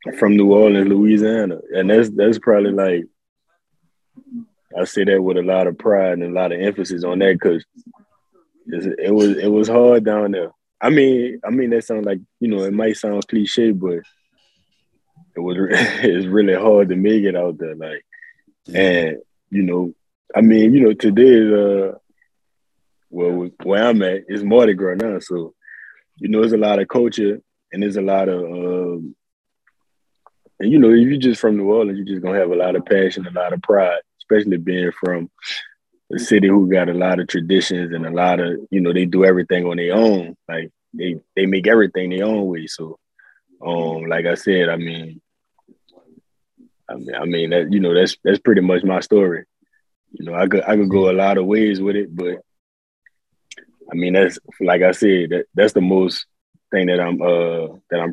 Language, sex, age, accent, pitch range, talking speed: English, male, 20-39, American, 90-105 Hz, 200 wpm